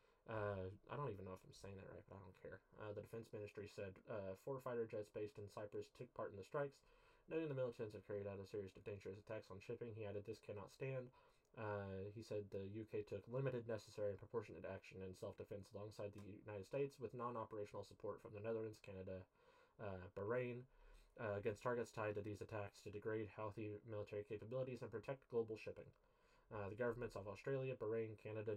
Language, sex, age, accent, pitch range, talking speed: English, male, 20-39, American, 105-125 Hz, 205 wpm